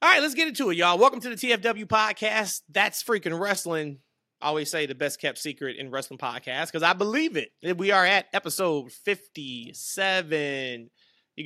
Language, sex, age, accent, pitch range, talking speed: English, male, 20-39, American, 140-185 Hz, 185 wpm